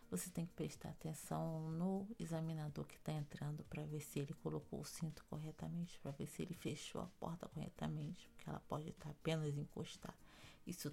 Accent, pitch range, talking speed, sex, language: Brazilian, 155-200 Hz, 185 wpm, female, Portuguese